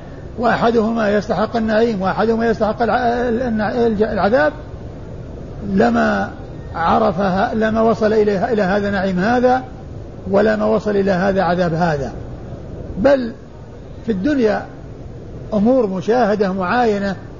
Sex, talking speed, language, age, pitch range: male, 90 wpm, Arabic, 50-69, 195-235 Hz